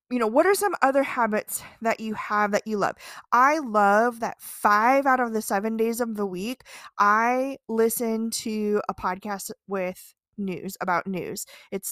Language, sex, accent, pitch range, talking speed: English, female, American, 205-270 Hz, 175 wpm